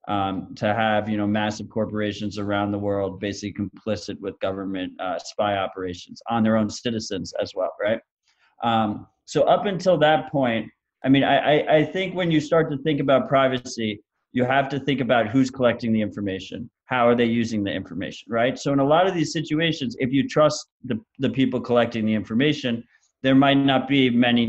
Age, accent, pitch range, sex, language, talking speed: 30-49, American, 110-135 Hz, male, English, 195 wpm